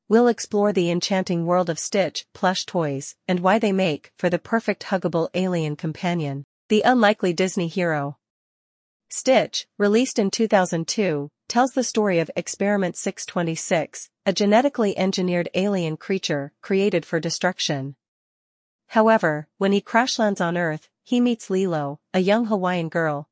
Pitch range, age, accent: 160-205 Hz, 40-59, American